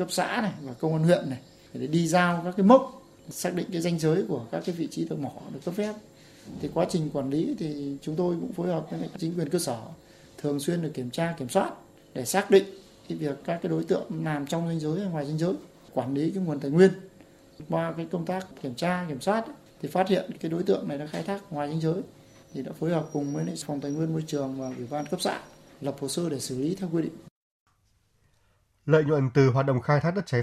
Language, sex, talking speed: Vietnamese, male, 260 wpm